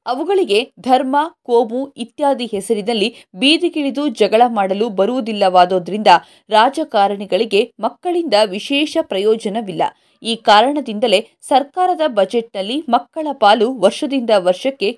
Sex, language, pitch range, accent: female, Kannada, 215-285 Hz, native